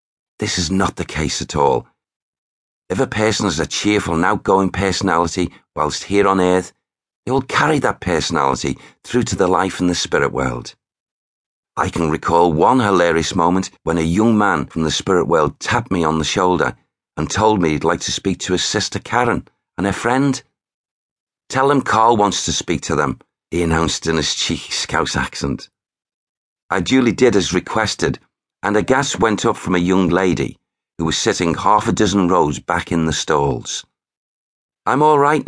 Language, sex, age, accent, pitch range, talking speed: English, male, 50-69, British, 80-105 Hz, 185 wpm